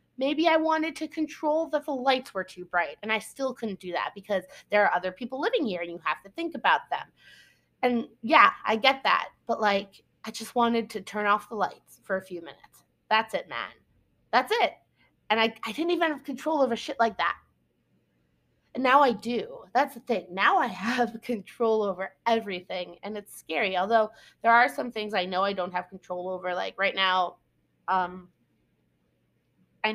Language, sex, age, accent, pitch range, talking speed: English, female, 20-39, American, 185-245 Hz, 200 wpm